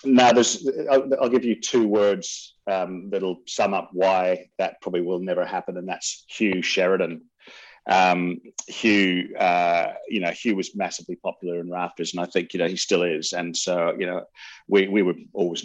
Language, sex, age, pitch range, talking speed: English, male, 30-49, 85-100 Hz, 185 wpm